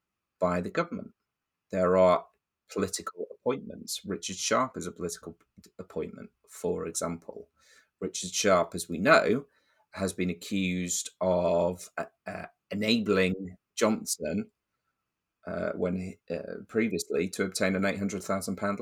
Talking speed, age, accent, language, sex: 120 wpm, 30-49, British, English, male